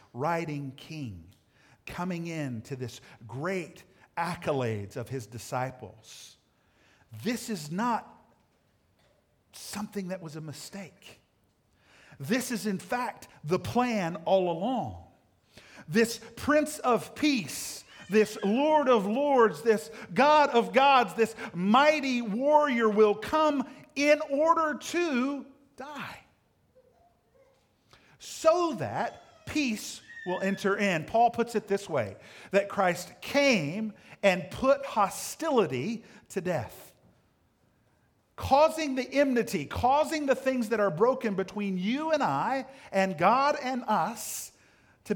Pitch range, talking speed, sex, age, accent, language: 170-265 Hz, 115 wpm, male, 50-69, American, English